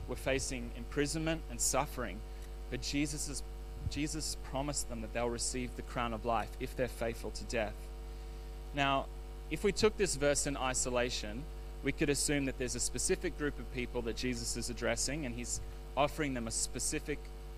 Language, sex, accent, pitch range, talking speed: English, male, Australian, 115-145 Hz, 175 wpm